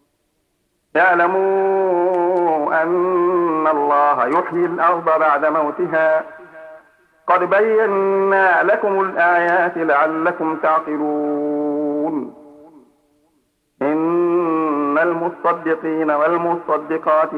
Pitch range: 155-185 Hz